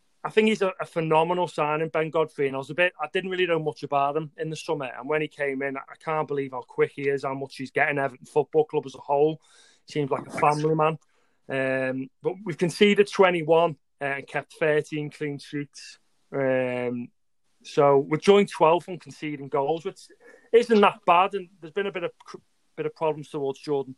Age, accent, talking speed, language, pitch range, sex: 30-49, British, 210 wpm, English, 145-170 Hz, male